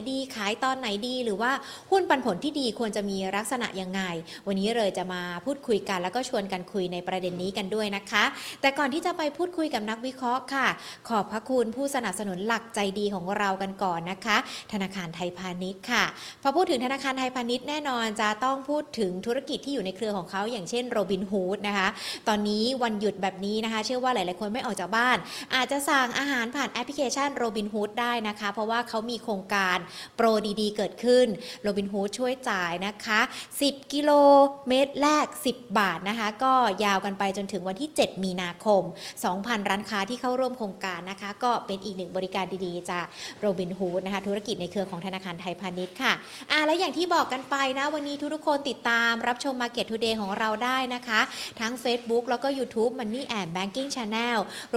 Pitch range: 195-255 Hz